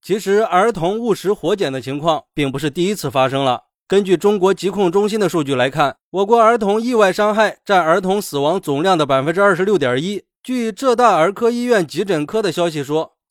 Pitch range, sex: 155-220 Hz, male